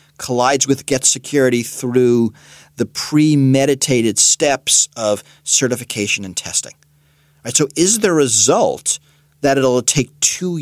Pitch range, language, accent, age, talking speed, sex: 115-150 Hz, English, American, 40-59, 120 wpm, male